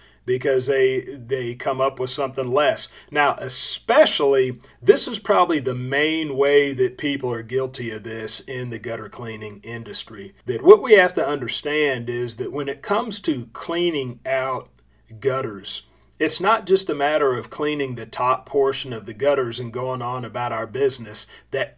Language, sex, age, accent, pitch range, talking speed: English, male, 40-59, American, 125-175 Hz, 170 wpm